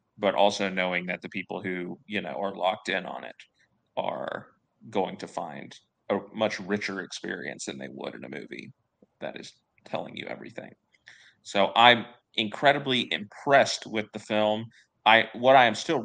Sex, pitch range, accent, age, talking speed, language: male, 100-115 Hz, American, 30-49, 170 wpm, English